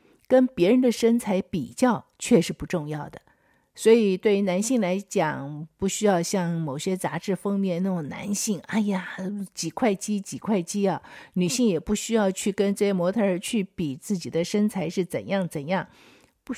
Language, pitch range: Chinese, 175-235 Hz